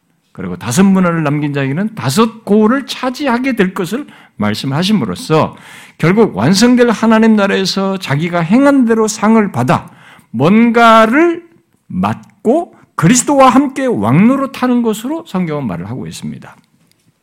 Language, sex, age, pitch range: Korean, male, 60-79, 140-235 Hz